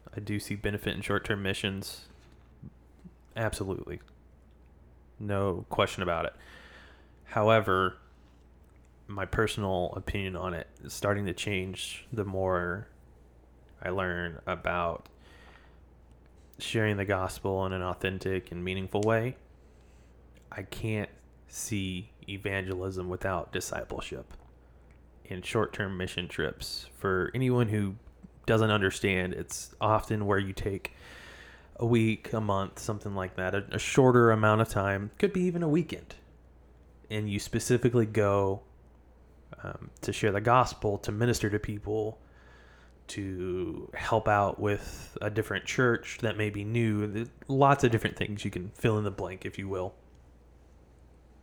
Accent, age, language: American, 20-39, English